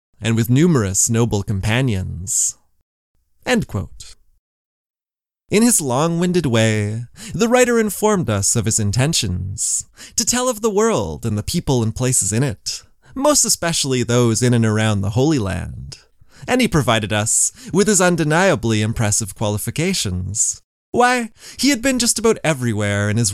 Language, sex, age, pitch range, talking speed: English, male, 20-39, 110-180 Hz, 150 wpm